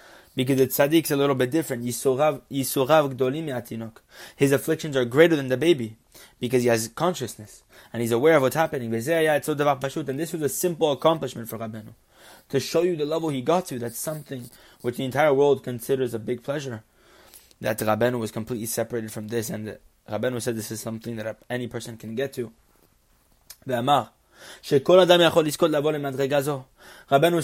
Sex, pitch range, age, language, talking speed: male, 120-155 Hz, 20-39, English, 155 wpm